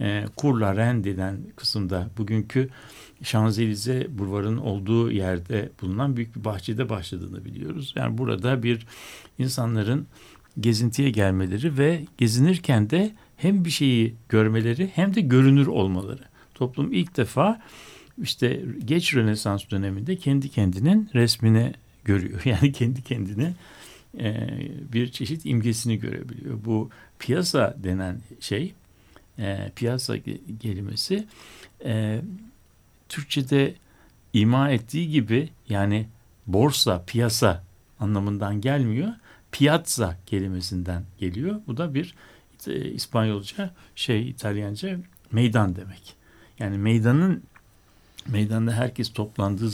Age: 60-79